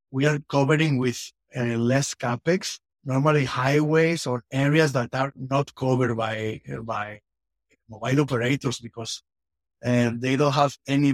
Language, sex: English, male